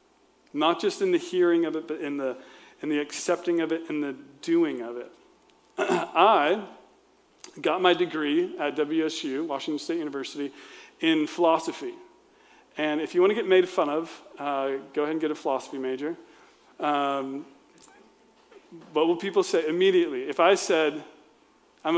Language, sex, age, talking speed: English, male, 40-59, 160 wpm